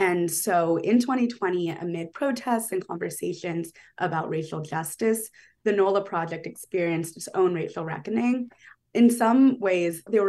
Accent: American